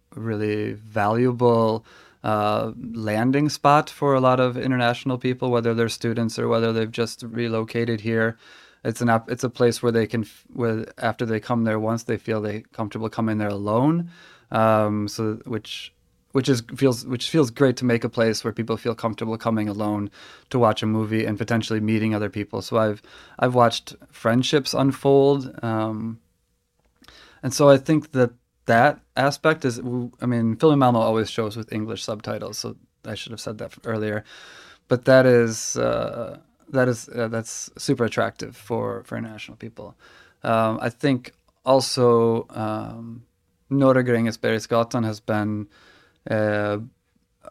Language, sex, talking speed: English, male, 160 wpm